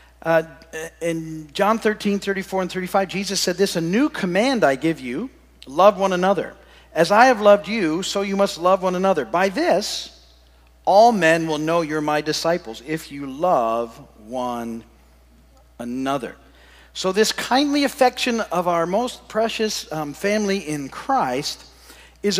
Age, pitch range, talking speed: 50-69, 140-200 Hz, 155 wpm